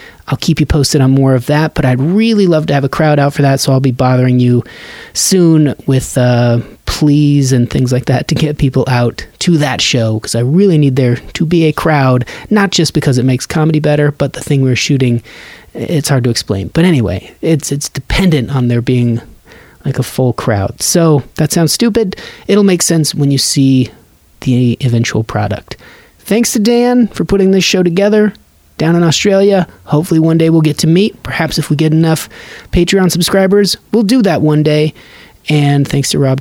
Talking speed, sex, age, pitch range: 205 wpm, male, 30-49, 130-165 Hz